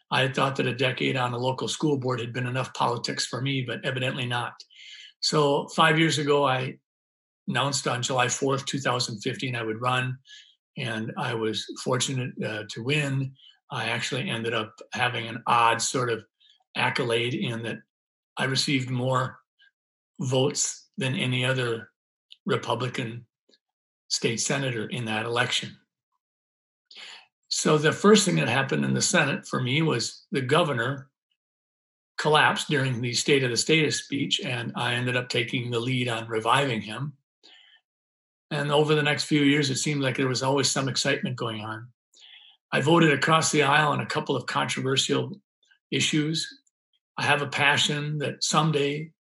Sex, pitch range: male, 120-145 Hz